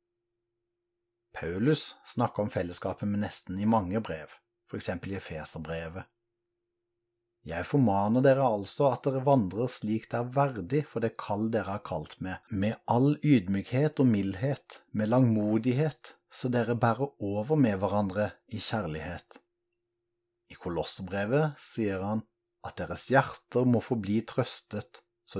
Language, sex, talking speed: Danish, male, 135 wpm